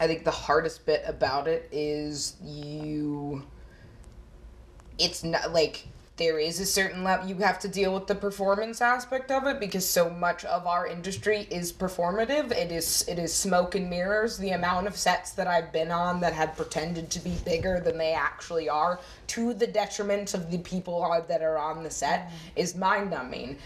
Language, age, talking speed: English, 20-39, 185 wpm